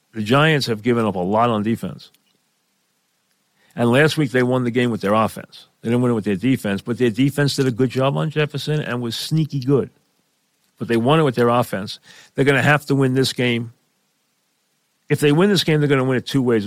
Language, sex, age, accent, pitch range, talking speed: English, male, 50-69, American, 115-140 Hz, 240 wpm